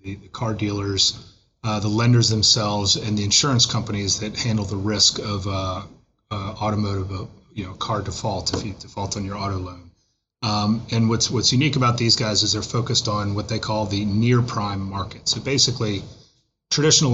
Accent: American